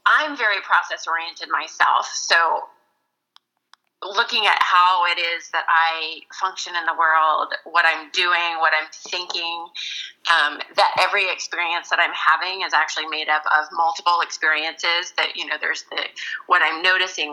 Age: 30-49